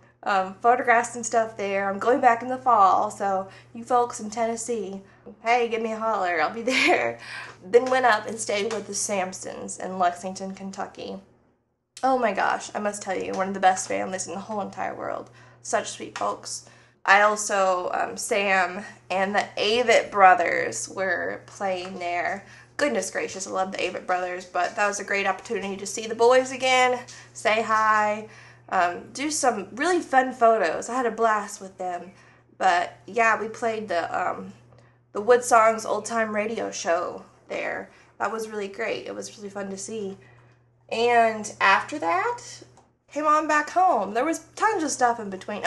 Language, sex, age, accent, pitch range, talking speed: English, female, 20-39, American, 190-240 Hz, 175 wpm